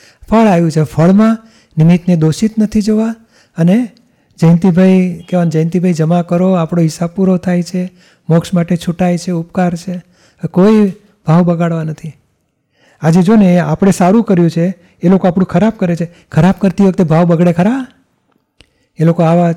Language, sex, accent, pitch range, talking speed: Gujarati, male, native, 160-190 Hz, 155 wpm